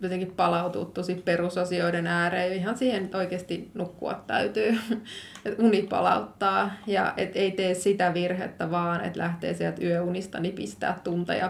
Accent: native